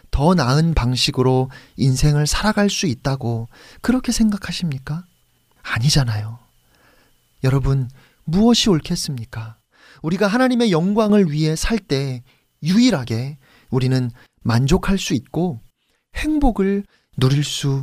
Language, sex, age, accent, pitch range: Korean, male, 40-59, native, 145-230 Hz